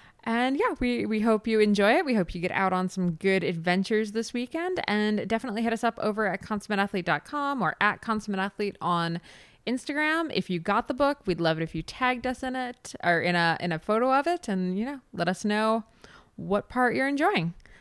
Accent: American